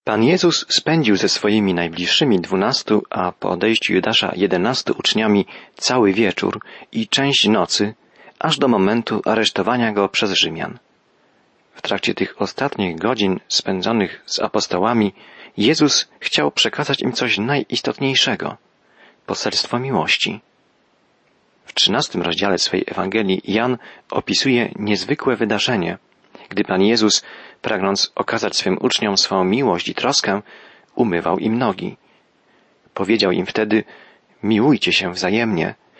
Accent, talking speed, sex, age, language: native, 115 wpm, male, 40-59, Polish